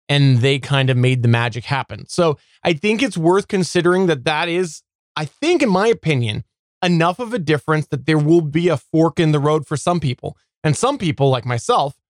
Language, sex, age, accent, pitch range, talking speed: English, male, 20-39, American, 135-175 Hz, 210 wpm